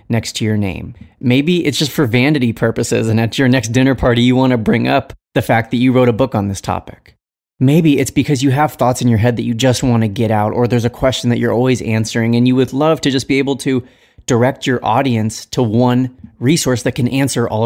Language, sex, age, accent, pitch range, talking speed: English, male, 30-49, American, 115-135 Hz, 250 wpm